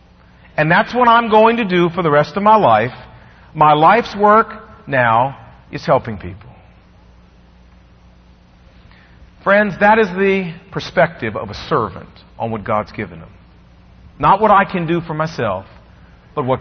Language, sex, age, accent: English, male, 40-59, American